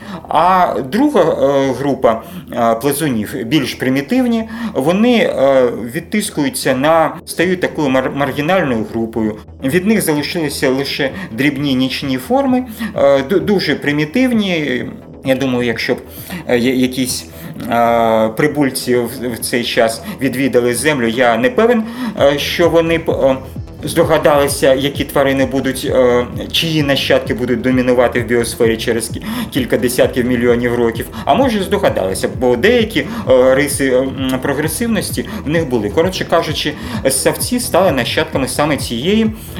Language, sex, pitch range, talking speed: Ukrainian, male, 120-155 Hz, 105 wpm